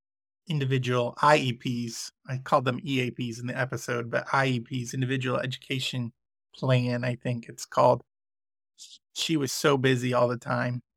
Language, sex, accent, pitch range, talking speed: English, male, American, 120-145 Hz, 135 wpm